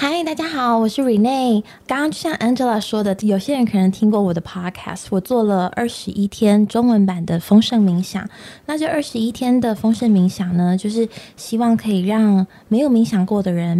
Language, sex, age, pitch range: Chinese, female, 20-39, 185-225 Hz